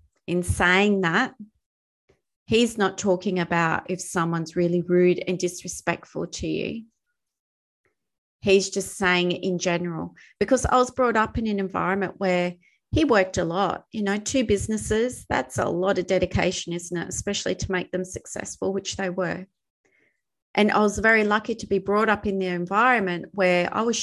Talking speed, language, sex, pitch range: 165 wpm, English, female, 180-205 Hz